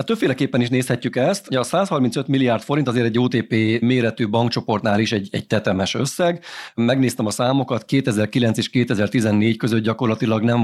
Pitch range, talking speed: 105-125 Hz, 165 wpm